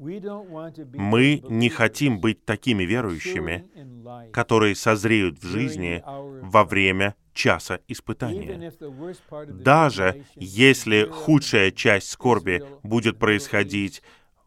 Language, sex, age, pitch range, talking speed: Russian, male, 20-39, 110-140 Hz, 85 wpm